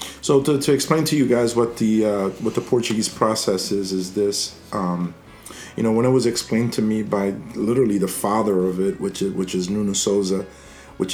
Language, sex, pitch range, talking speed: English, male, 100-115 Hz, 210 wpm